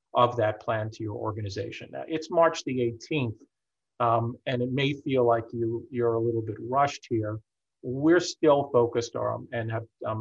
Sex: male